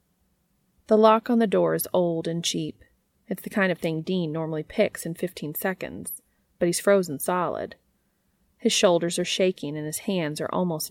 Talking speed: 180 wpm